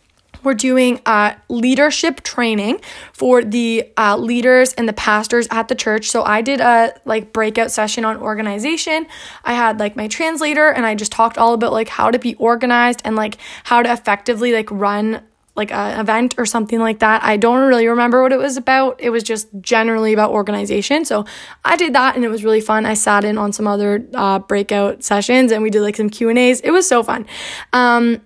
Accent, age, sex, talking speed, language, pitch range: American, 20-39, female, 205 wpm, English, 215-260 Hz